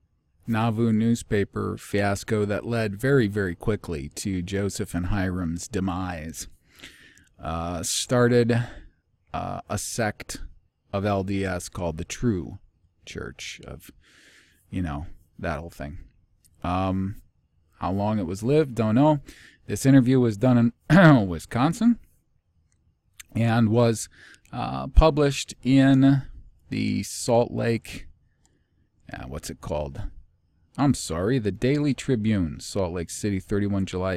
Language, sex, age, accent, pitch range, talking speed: English, male, 40-59, American, 90-120 Hz, 115 wpm